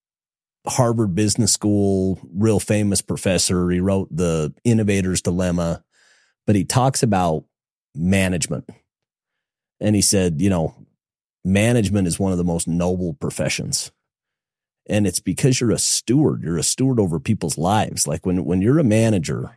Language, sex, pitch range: English, male, 85-105 Hz